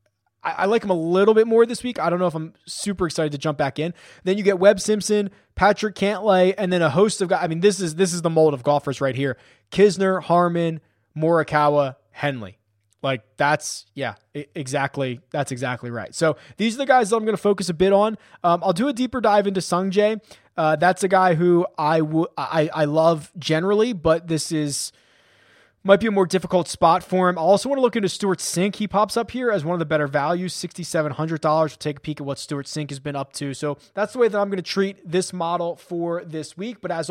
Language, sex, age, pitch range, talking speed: English, male, 20-39, 155-200 Hz, 235 wpm